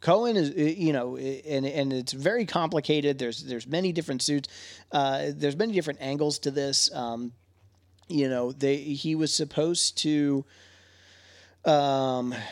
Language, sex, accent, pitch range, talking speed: English, male, American, 120-150 Hz, 145 wpm